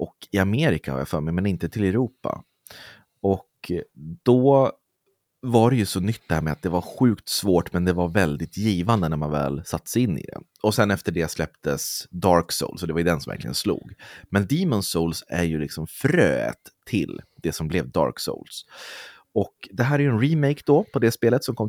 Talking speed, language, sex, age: 220 wpm, Swedish, male, 30-49